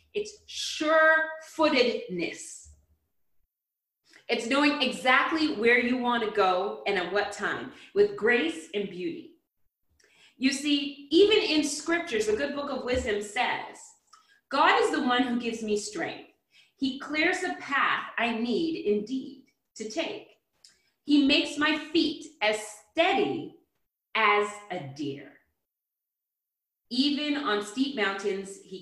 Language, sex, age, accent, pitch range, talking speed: English, female, 30-49, American, 200-305 Hz, 125 wpm